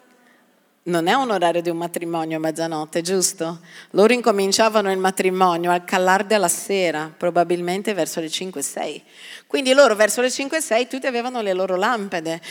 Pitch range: 185-265 Hz